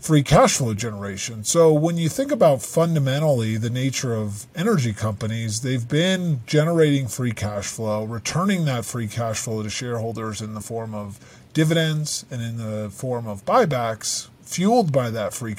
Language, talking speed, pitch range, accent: English, 165 wpm, 115-155 Hz, American